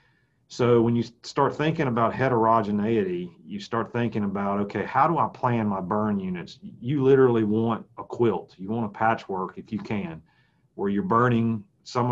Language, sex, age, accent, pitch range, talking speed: English, male, 40-59, American, 100-130 Hz, 175 wpm